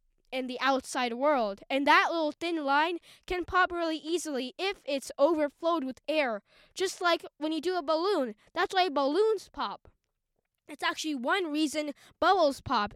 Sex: female